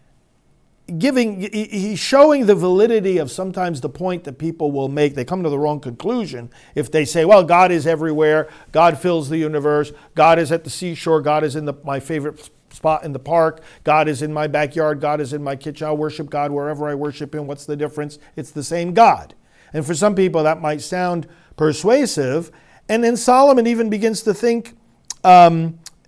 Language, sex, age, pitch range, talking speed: English, male, 50-69, 155-230 Hz, 195 wpm